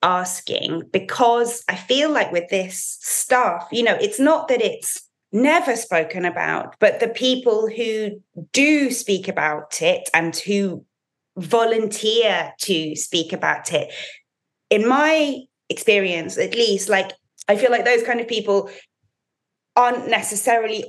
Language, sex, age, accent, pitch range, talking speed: English, female, 20-39, British, 170-235 Hz, 135 wpm